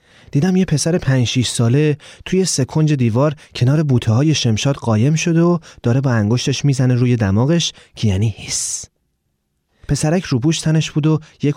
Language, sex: Persian, male